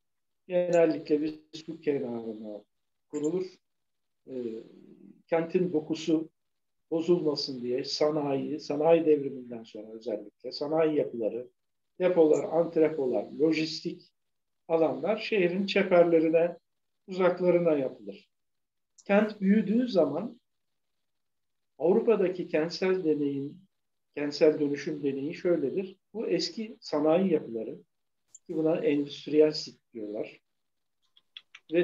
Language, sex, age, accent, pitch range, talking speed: Turkish, male, 60-79, native, 140-180 Hz, 85 wpm